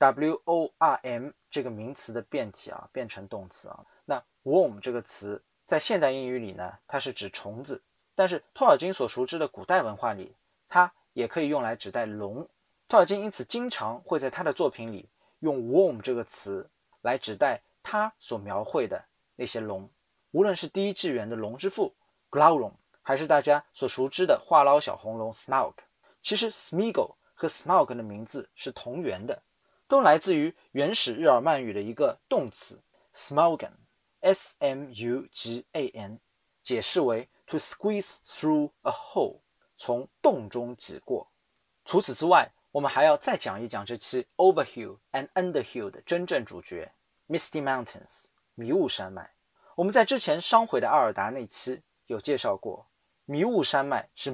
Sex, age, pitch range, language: male, 20-39, 120-190 Hz, Chinese